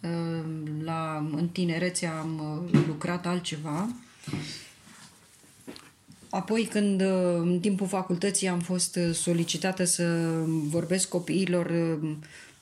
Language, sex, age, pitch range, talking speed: Romanian, female, 20-39, 165-190 Hz, 75 wpm